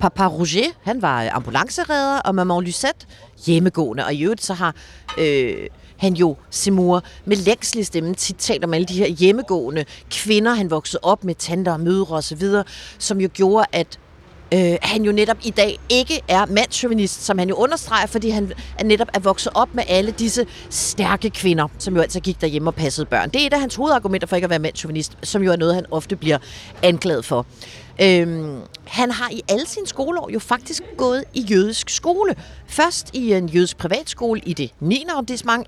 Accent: native